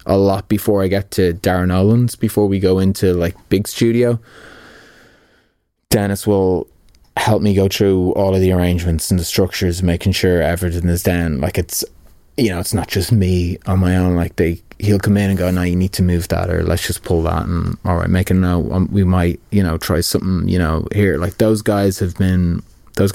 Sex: male